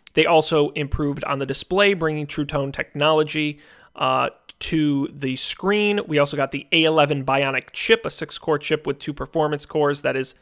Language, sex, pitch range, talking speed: English, male, 140-160 Hz, 175 wpm